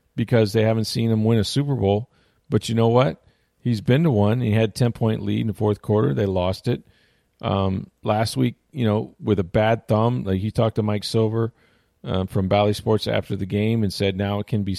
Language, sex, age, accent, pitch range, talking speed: English, male, 40-59, American, 100-120 Hz, 230 wpm